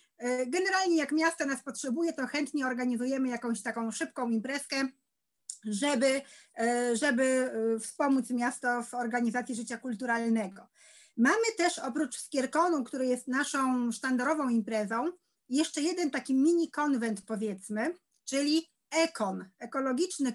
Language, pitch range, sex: Polish, 240-310 Hz, female